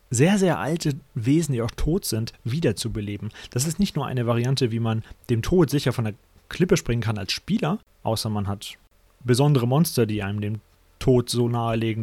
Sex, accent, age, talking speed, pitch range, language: male, German, 30-49, 195 wpm, 115-145 Hz, German